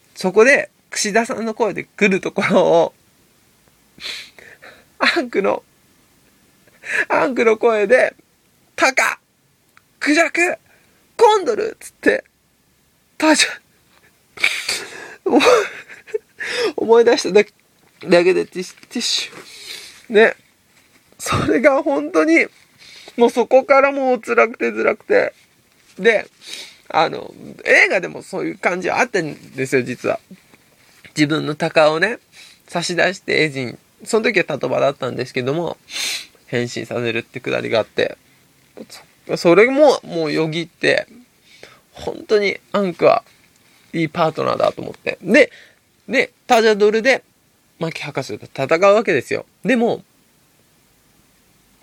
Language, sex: Japanese, male